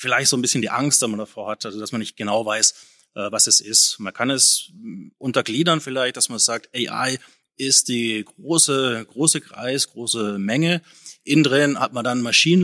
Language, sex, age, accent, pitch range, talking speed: German, male, 30-49, German, 115-140 Hz, 190 wpm